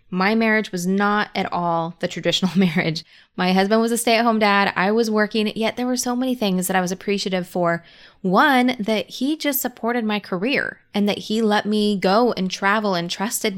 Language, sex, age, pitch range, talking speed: English, female, 20-39, 190-230 Hz, 205 wpm